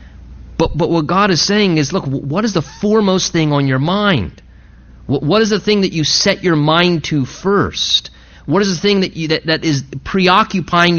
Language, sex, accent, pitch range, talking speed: English, male, American, 145-195 Hz, 210 wpm